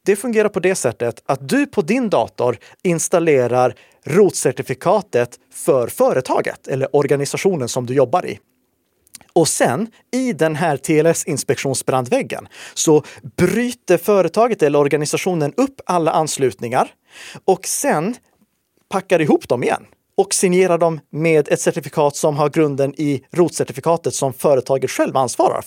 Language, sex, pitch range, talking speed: Swedish, male, 140-195 Hz, 130 wpm